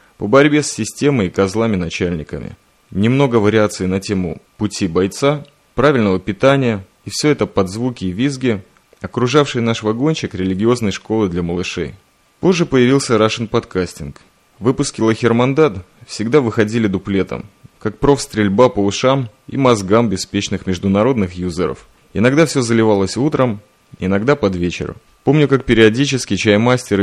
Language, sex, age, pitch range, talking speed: Russian, male, 20-39, 95-130 Hz, 125 wpm